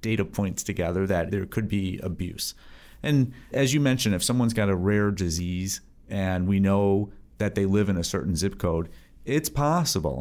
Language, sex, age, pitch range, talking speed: English, male, 40-59, 95-115 Hz, 180 wpm